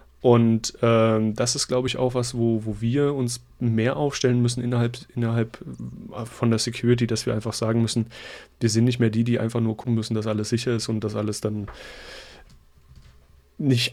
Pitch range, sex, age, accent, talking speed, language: 110-125 Hz, male, 30-49, German, 190 wpm, German